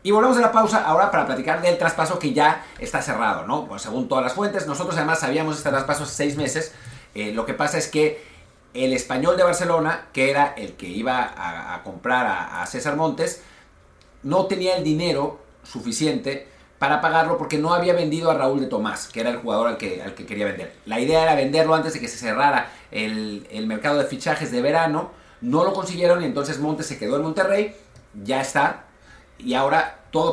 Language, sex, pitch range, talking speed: Spanish, male, 135-180 Hz, 210 wpm